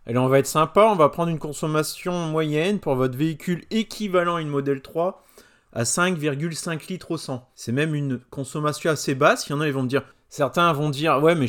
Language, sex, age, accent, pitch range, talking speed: French, male, 30-49, French, 125-165 Hz, 230 wpm